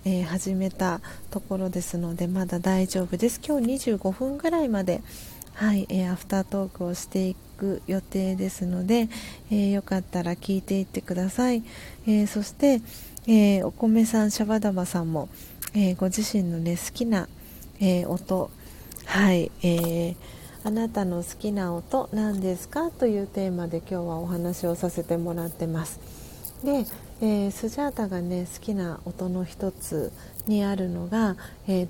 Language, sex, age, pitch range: Japanese, female, 40-59, 180-220 Hz